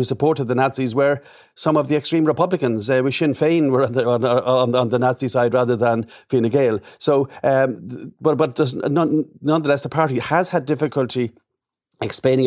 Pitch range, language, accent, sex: 120-145 Hz, English, Irish, male